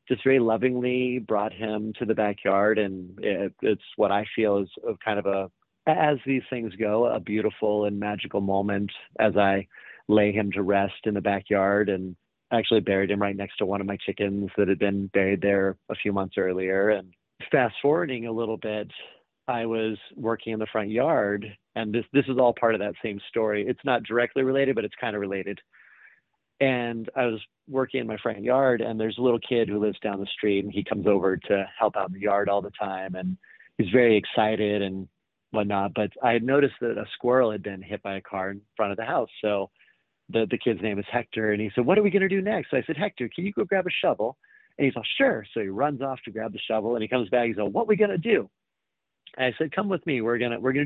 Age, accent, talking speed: 30-49, American, 245 wpm